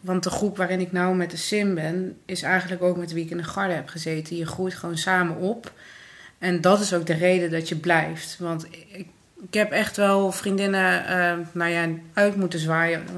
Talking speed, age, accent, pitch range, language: 220 wpm, 30-49, Dutch, 170-190 Hz, Dutch